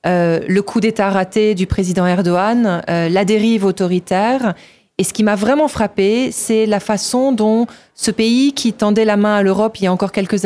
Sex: female